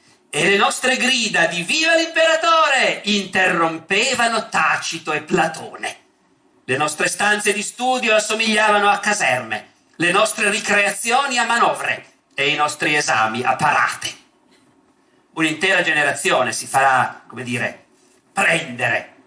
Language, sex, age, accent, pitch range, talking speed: Italian, male, 50-69, native, 165-260 Hz, 115 wpm